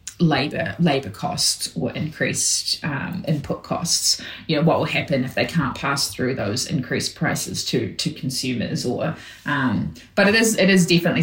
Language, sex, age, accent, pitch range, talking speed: English, female, 20-39, Australian, 135-170 Hz, 170 wpm